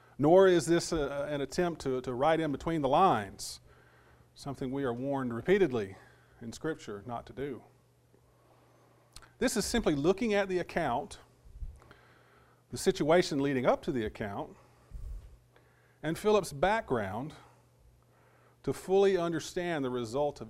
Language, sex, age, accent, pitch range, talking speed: English, male, 40-59, American, 125-165 Hz, 130 wpm